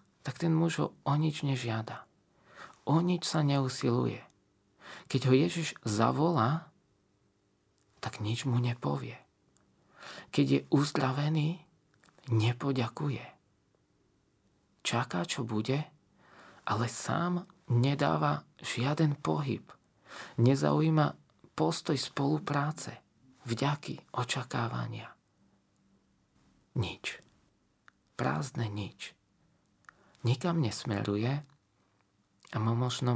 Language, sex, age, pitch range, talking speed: Slovak, male, 40-59, 110-145 Hz, 80 wpm